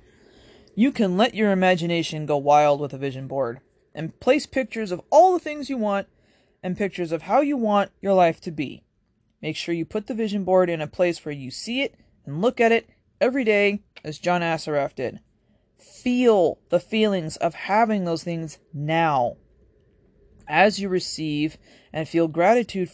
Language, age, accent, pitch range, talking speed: English, 20-39, American, 140-200 Hz, 180 wpm